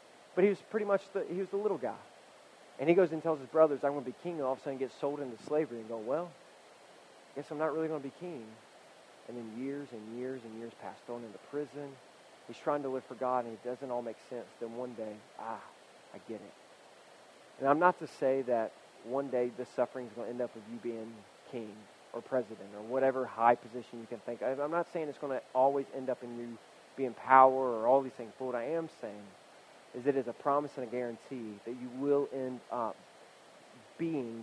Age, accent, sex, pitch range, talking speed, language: 20-39, American, male, 120-150 Hz, 245 wpm, English